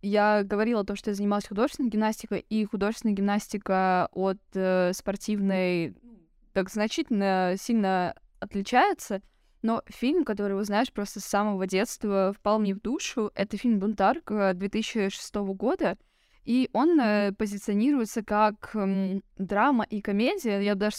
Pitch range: 200-235 Hz